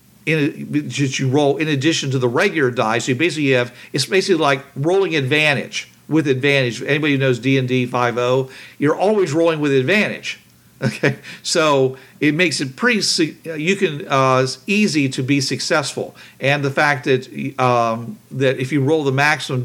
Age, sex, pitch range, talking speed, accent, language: 50-69, male, 130-155 Hz, 170 wpm, American, English